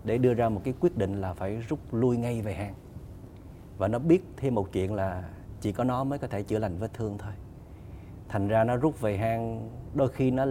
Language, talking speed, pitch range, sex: Vietnamese, 235 wpm, 95-130 Hz, male